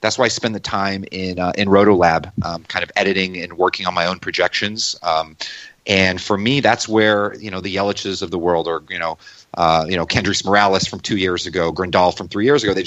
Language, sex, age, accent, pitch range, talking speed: English, male, 30-49, American, 90-110 Hz, 240 wpm